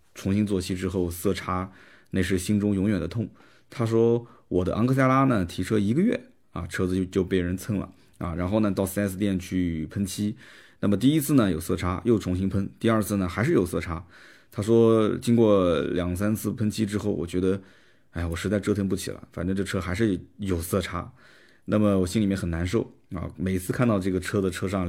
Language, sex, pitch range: Chinese, male, 90-110 Hz